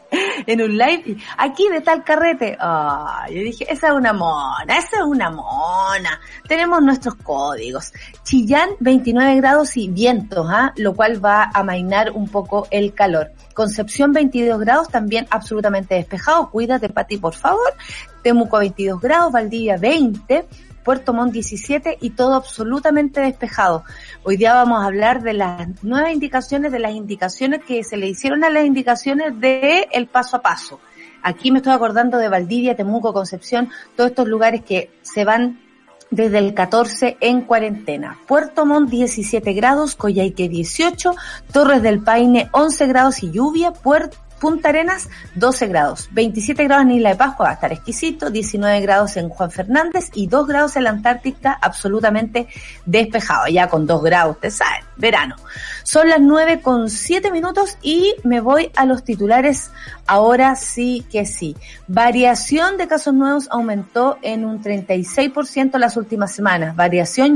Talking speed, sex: 160 wpm, female